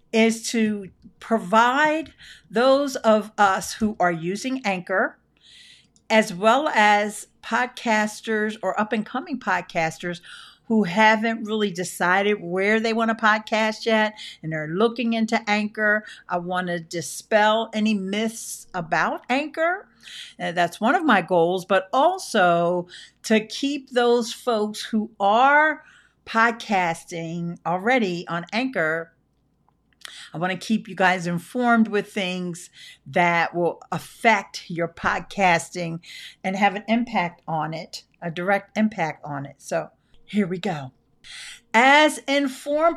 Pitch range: 175-240 Hz